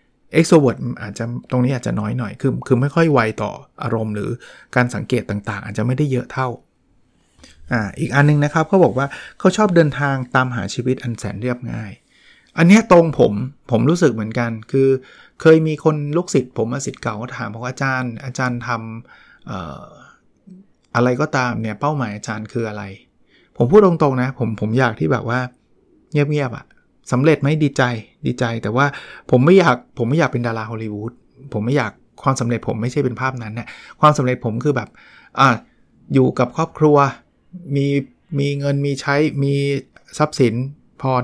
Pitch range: 120-145 Hz